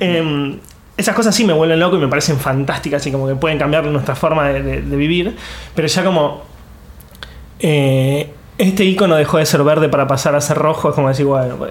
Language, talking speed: Spanish, 210 wpm